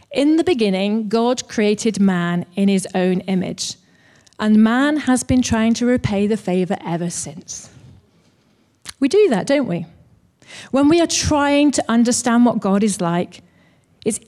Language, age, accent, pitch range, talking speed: English, 40-59, British, 195-245 Hz, 155 wpm